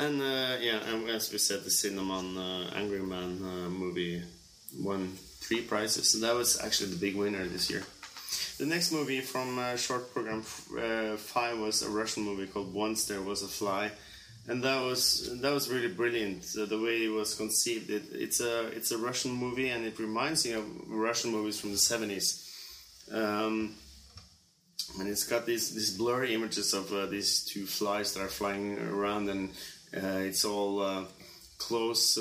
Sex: male